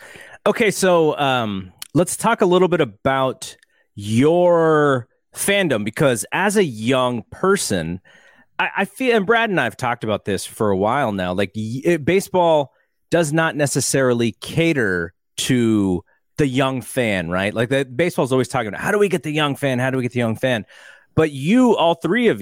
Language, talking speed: English, 180 wpm